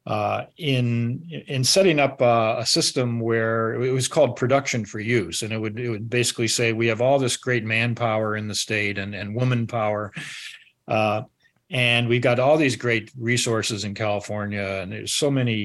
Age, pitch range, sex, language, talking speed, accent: 50-69, 105-125 Hz, male, English, 190 wpm, American